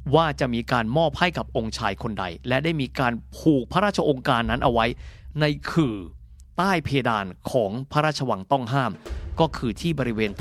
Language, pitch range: Thai, 105-165 Hz